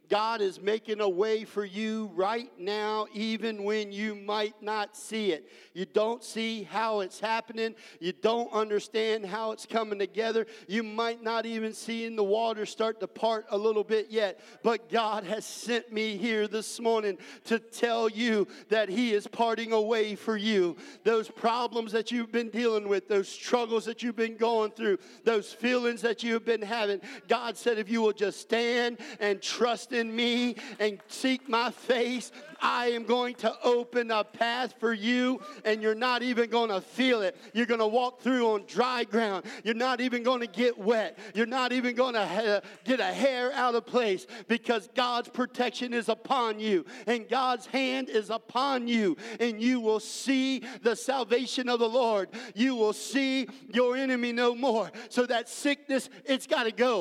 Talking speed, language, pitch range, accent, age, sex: 180 wpm, English, 215-240 Hz, American, 50-69, male